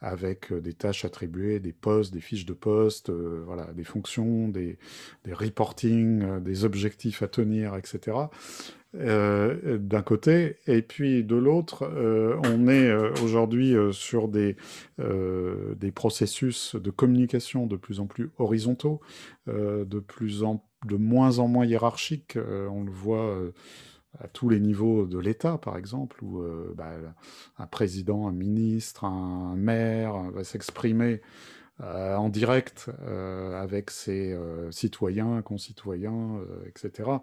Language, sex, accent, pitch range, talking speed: French, male, French, 100-125 Hz, 130 wpm